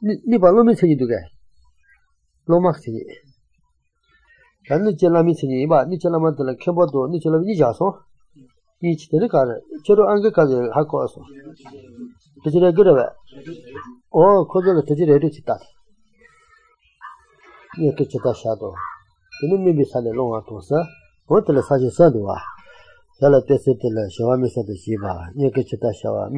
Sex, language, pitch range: male, English, 130-185 Hz